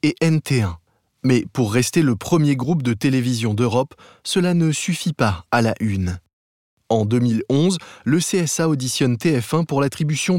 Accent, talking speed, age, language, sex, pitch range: French, 150 wpm, 20-39, French, male, 115-150 Hz